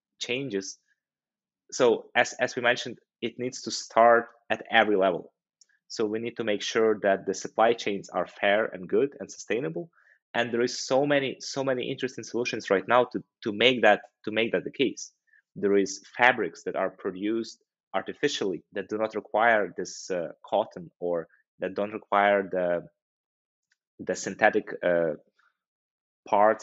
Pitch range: 100-120 Hz